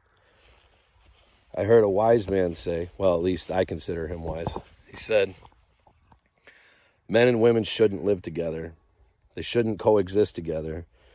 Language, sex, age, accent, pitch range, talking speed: English, male, 40-59, American, 85-110 Hz, 135 wpm